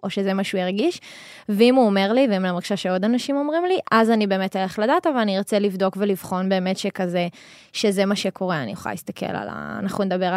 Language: Hebrew